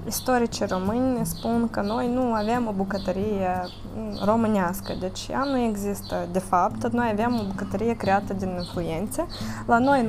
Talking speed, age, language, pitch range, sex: 155 wpm, 20-39, Romanian, 180-235 Hz, female